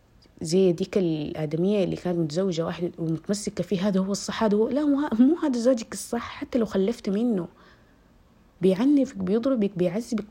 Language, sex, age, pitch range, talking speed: Arabic, female, 20-39, 180-235 Hz, 150 wpm